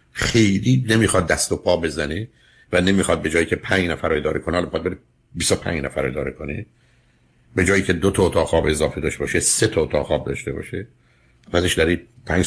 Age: 60-79